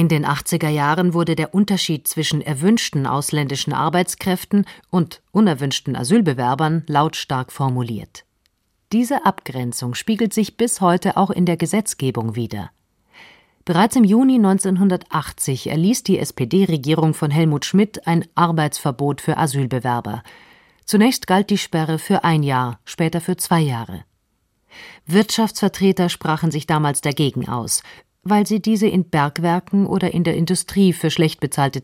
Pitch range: 145-190 Hz